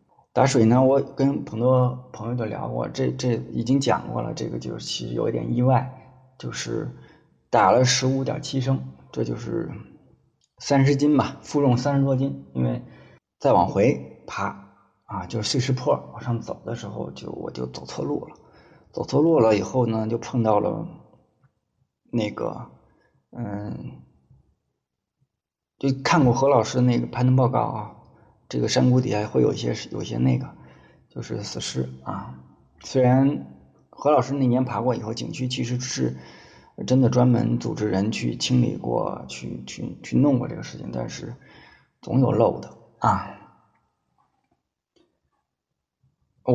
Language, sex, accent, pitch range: Chinese, male, native, 100-130 Hz